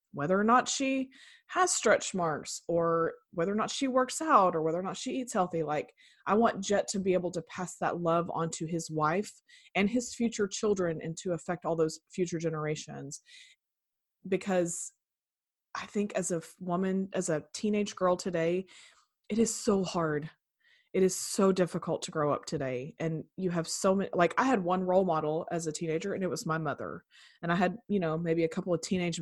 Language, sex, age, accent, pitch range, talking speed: English, female, 20-39, American, 160-200 Hz, 200 wpm